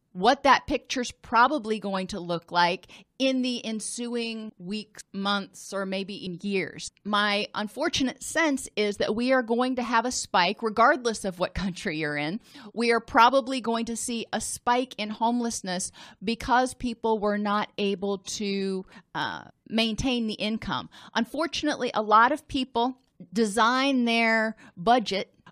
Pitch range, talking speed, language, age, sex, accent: 190-245 Hz, 150 wpm, English, 40-59, female, American